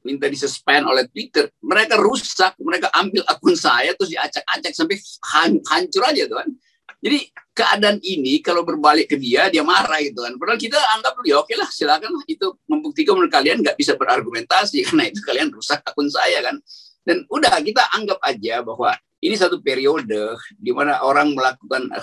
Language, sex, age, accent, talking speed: Indonesian, male, 50-69, native, 160 wpm